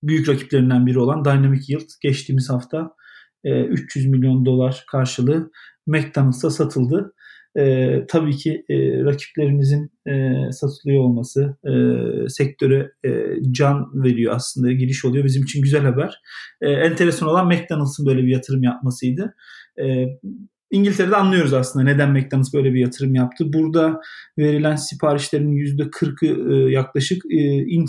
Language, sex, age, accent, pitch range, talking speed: Turkish, male, 40-59, native, 135-160 Hz, 125 wpm